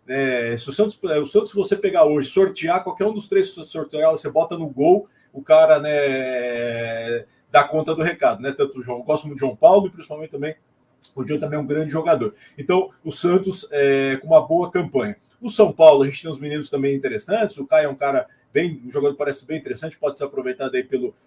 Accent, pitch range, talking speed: Brazilian, 145-200 Hz, 225 wpm